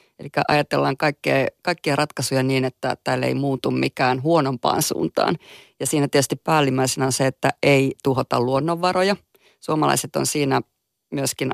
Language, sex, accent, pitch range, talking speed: Finnish, female, native, 130-155 Hz, 140 wpm